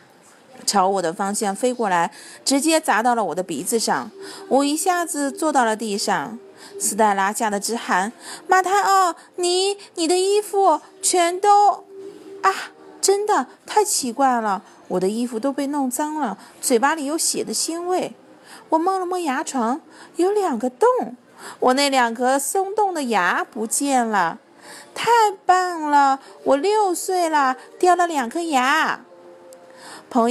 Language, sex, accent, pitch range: Chinese, female, native, 225-335 Hz